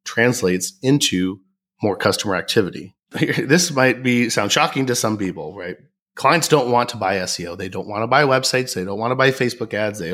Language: English